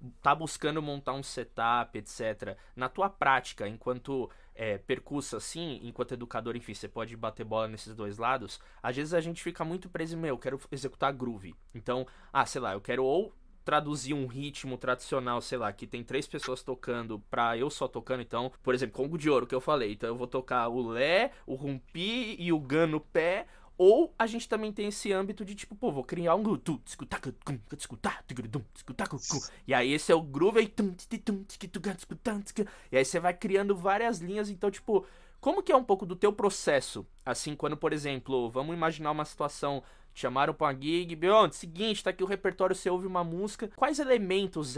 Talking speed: 185 wpm